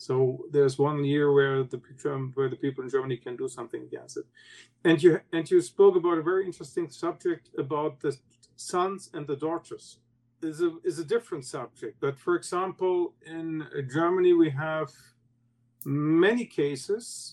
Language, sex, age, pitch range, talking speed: English, male, 50-69, 125-205 Hz, 165 wpm